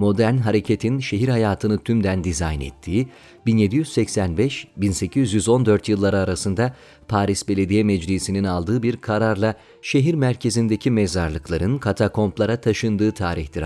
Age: 40-59